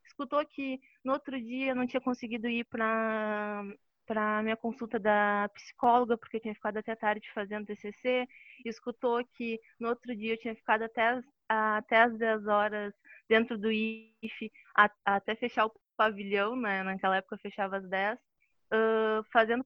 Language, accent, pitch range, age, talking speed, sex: Portuguese, Brazilian, 220-250 Hz, 20-39, 155 wpm, female